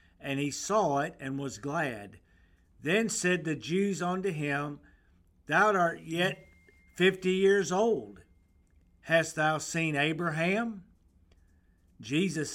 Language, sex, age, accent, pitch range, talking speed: English, male, 50-69, American, 130-175 Hz, 115 wpm